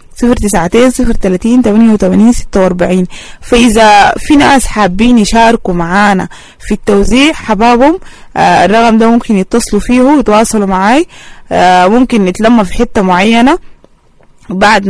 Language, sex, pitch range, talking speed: English, female, 185-240 Hz, 110 wpm